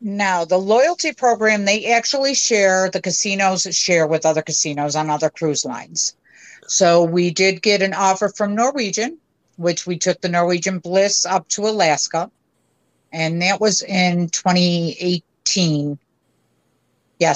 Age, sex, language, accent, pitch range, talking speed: 50-69, female, English, American, 175-225 Hz, 135 wpm